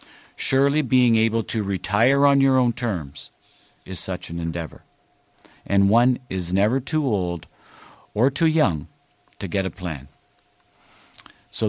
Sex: male